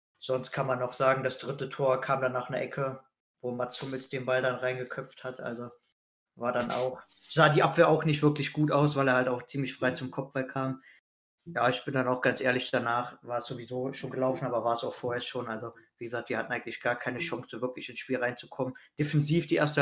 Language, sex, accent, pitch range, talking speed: German, male, German, 125-140 Hz, 235 wpm